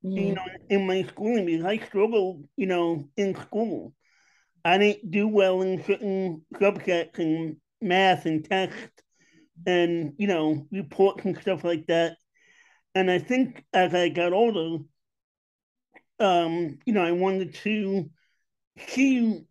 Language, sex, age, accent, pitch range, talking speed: English, male, 50-69, American, 175-210 Hz, 140 wpm